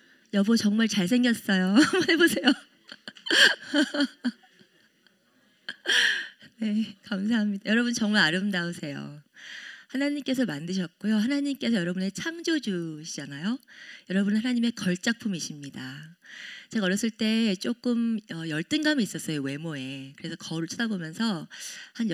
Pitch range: 180-235 Hz